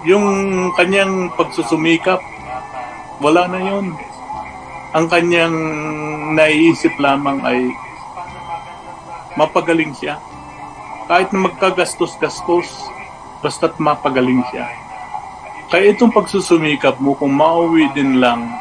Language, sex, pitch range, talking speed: Filipino, male, 125-170 Hz, 85 wpm